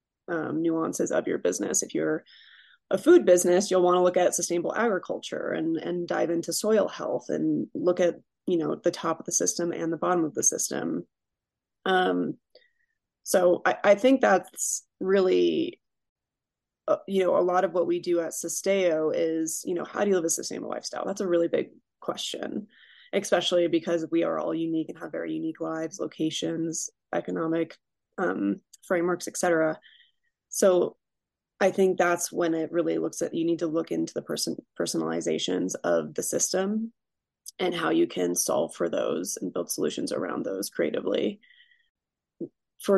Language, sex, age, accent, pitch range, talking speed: English, female, 20-39, American, 160-195 Hz, 170 wpm